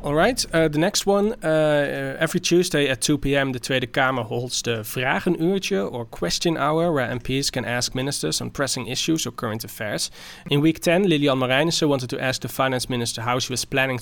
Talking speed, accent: 195 wpm, Dutch